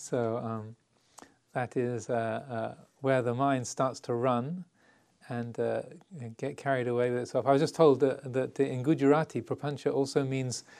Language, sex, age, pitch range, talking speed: English, male, 40-59, 125-155 Hz, 165 wpm